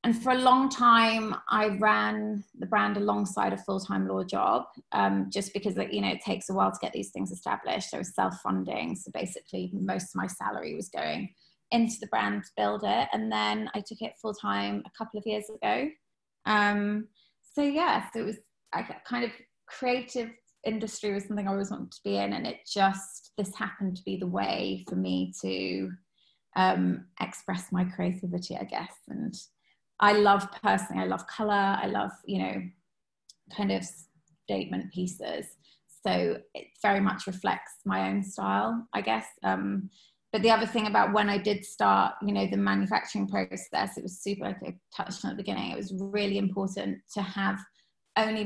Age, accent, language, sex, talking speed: 20-39, British, English, female, 185 wpm